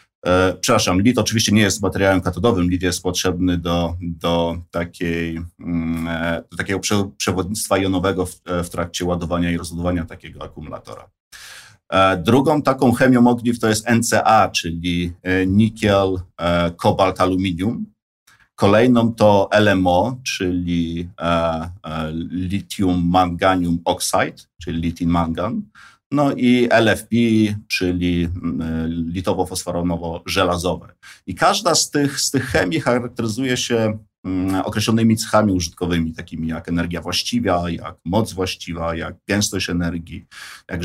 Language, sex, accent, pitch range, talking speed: Polish, male, native, 85-105 Hz, 100 wpm